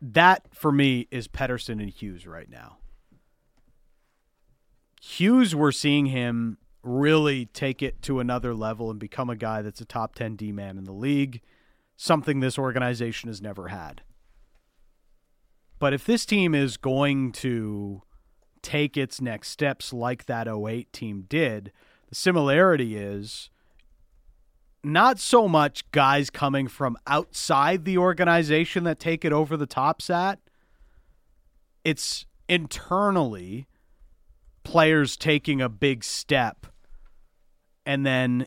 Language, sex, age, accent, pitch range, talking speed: English, male, 40-59, American, 115-150 Hz, 125 wpm